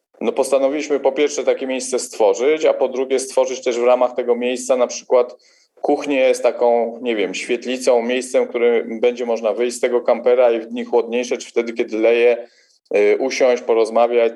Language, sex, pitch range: Polish, male, 120-150 Hz